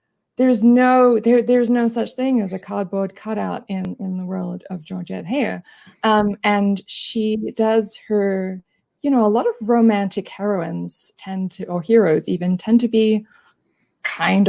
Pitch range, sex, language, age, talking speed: 190-230 Hz, female, English, 20-39, 160 wpm